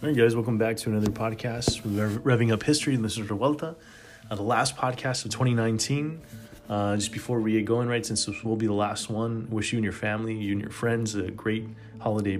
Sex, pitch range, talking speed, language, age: male, 105-115 Hz, 225 wpm, English, 20-39